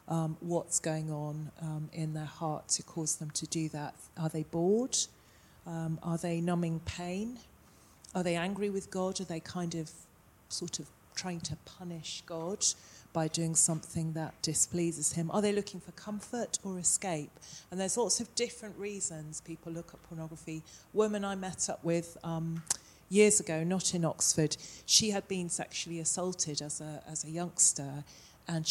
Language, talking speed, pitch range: English, 175 wpm, 160-180 Hz